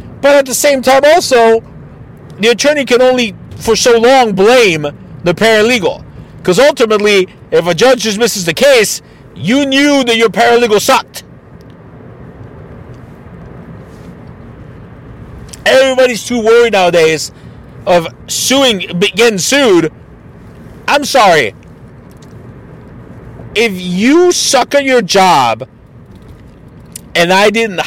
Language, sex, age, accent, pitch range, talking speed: English, male, 50-69, American, 150-235 Hz, 105 wpm